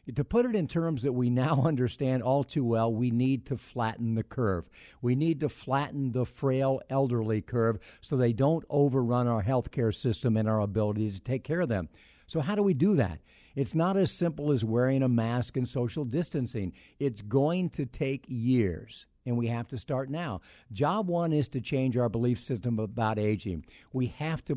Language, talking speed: English, 205 wpm